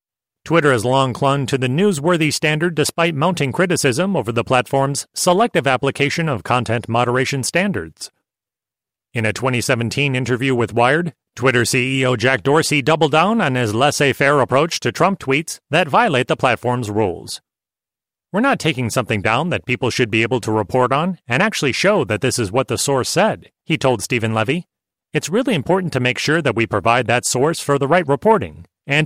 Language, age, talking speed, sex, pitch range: English, 30-49, 180 wpm, male, 120-160 Hz